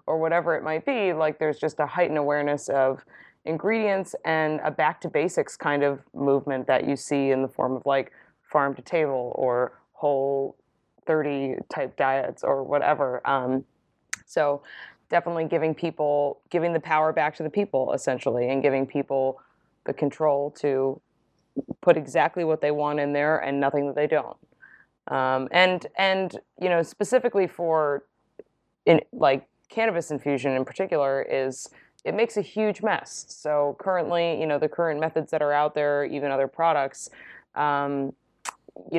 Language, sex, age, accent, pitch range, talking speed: English, female, 20-39, American, 140-165 Hz, 155 wpm